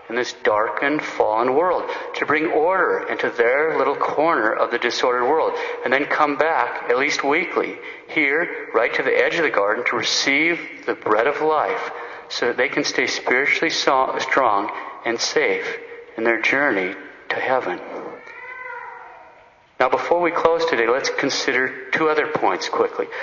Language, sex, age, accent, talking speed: English, male, 50-69, American, 160 wpm